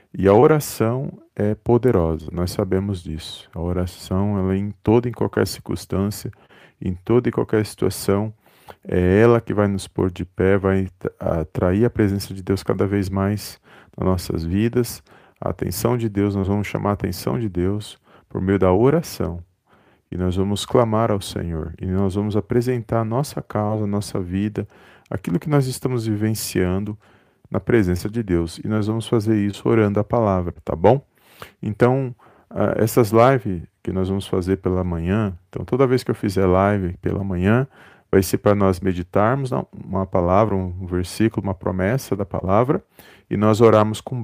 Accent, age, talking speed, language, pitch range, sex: Brazilian, 40-59, 175 wpm, Portuguese, 95-115 Hz, male